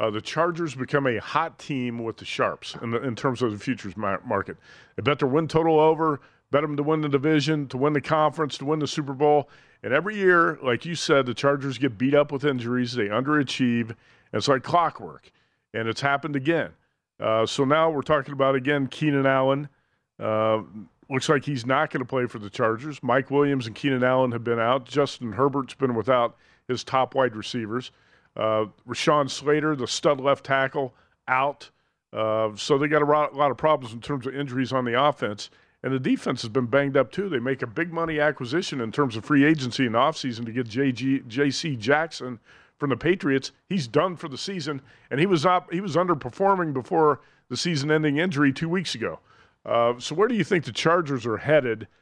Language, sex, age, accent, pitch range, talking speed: English, male, 40-59, American, 125-155 Hz, 200 wpm